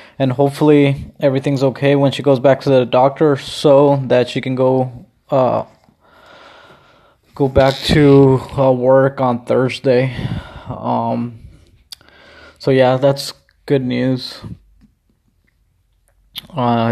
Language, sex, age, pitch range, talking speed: English, male, 20-39, 125-140 Hz, 110 wpm